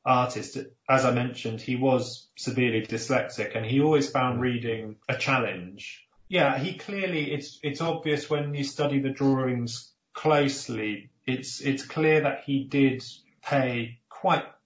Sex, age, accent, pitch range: male, 30-49, British, 115-140 Hz